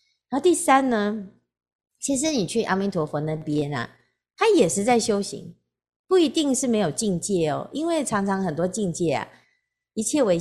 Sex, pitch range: female, 150-220 Hz